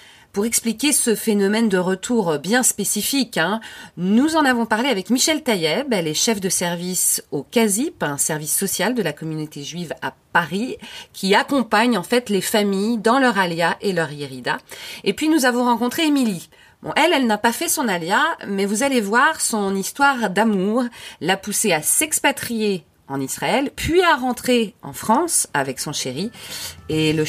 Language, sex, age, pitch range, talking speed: French, female, 30-49, 170-245 Hz, 180 wpm